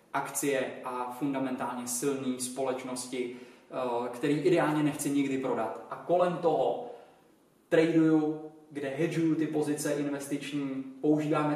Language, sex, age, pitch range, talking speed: Czech, male, 20-39, 135-160 Hz, 105 wpm